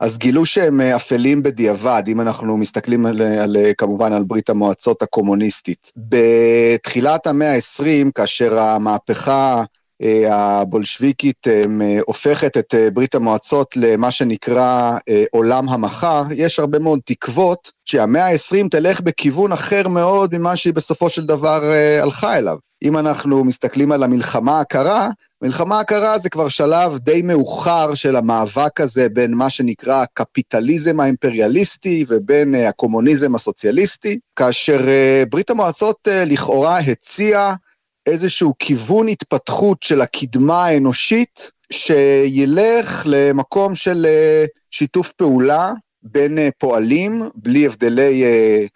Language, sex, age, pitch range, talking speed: Hebrew, male, 40-59, 120-170 Hz, 115 wpm